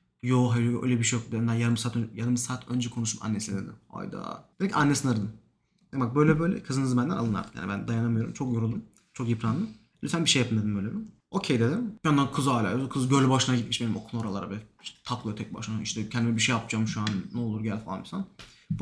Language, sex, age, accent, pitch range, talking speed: Turkish, male, 30-49, native, 120-160 Hz, 220 wpm